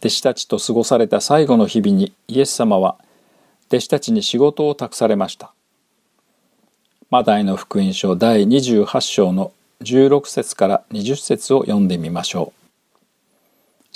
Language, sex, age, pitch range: Japanese, male, 50-69, 115-185 Hz